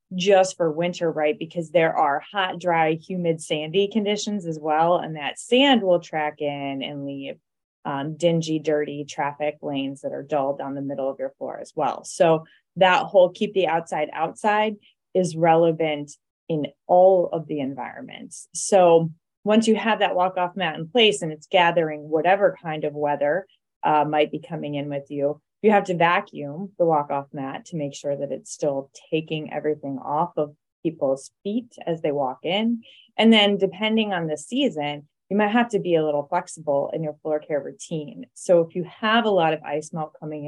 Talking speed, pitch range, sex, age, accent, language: 190 wpm, 150-185 Hz, female, 20-39, American, English